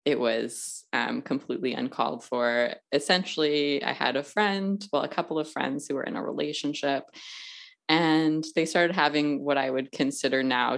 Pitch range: 135-175 Hz